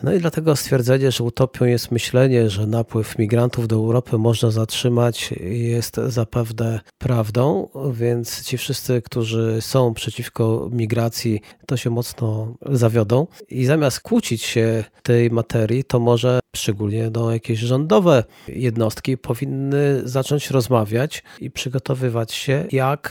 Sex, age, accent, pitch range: male, 40-59, native, 115-135 Hz